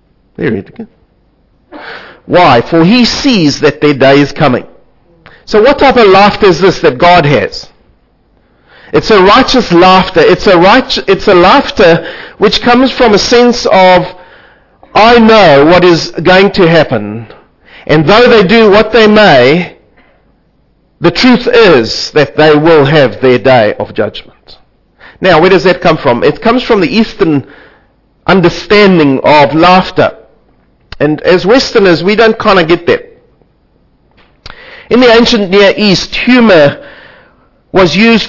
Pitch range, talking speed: 155-215 Hz, 145 wpm